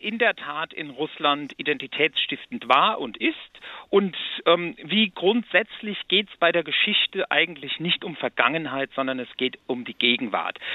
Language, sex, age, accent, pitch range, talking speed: German, male, 50-69, German, 155-215 Hz, 155 wpm